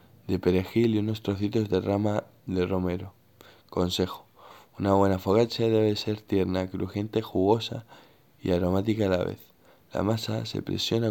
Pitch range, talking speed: 95-110 Hz, 145 wpm